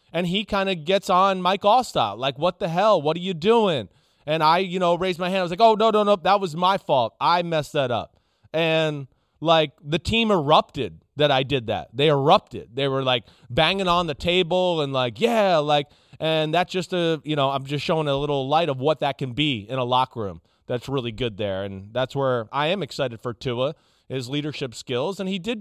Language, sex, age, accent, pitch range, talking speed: English, male, 30-49, American, 140-190 Hz, 230 wpm